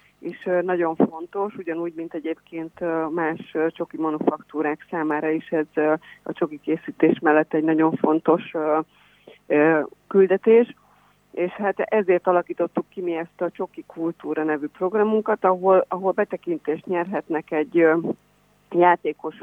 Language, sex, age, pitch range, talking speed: Hungarian, female, 30-49, 155-185 Hz, 115 wpm